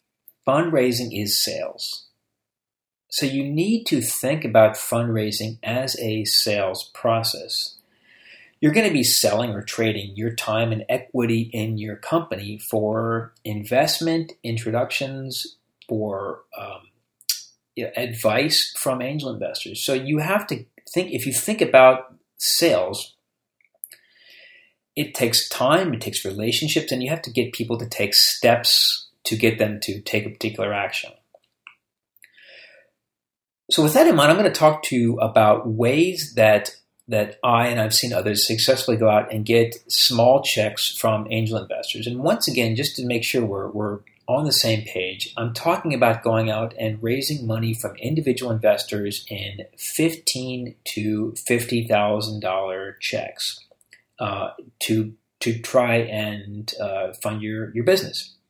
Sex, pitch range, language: male, 110-130 Hz, English